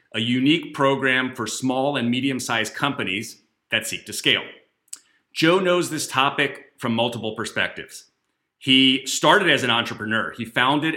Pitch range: 110-140 Hz